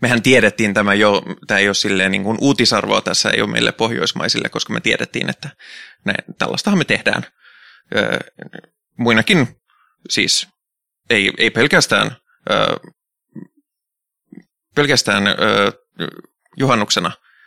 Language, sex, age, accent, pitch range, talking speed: Finnish, male, 20-39, native, 105-175 Hz, 115 wpm